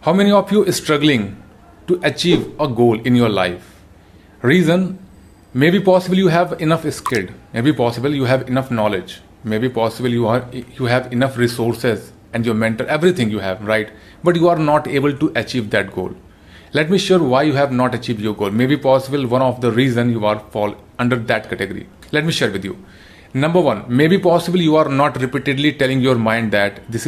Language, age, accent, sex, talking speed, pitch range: Hindi, 30-49, native, male, 200 wpm, 110-145 Hz